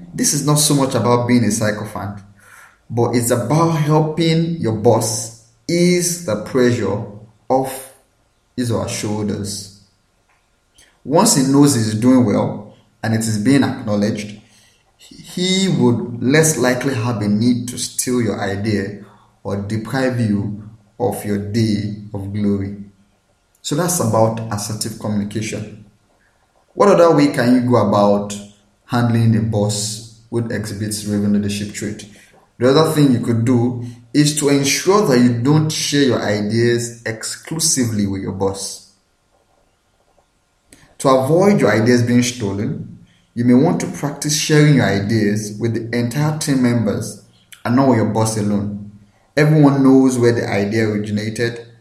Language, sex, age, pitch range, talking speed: English, male, 30-49, 105-130 Hz, 140 wpm